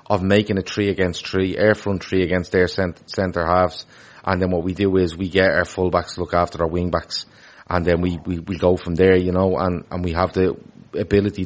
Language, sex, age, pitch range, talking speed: English, male, 30-49, 90-105 Hz, 225 wpm